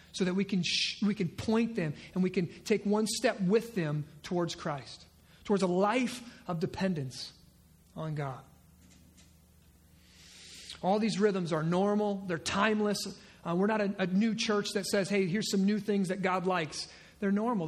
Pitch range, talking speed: 160-230 Hz, 175 wpm